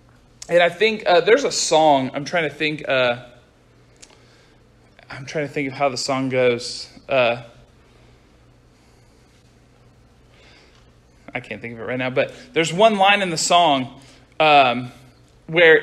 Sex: male